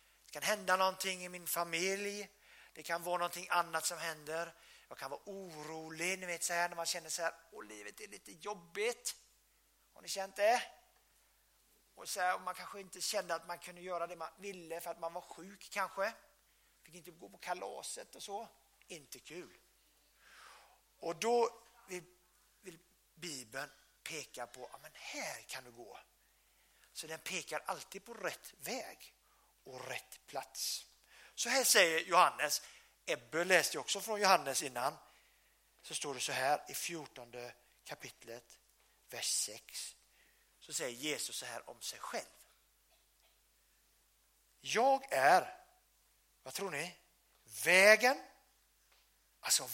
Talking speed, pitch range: 145 wpm, 165-200 Hz